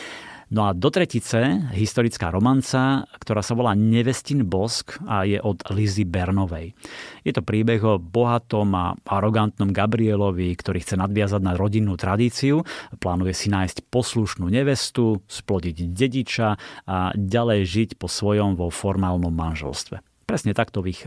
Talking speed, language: 140 wpm, Slovak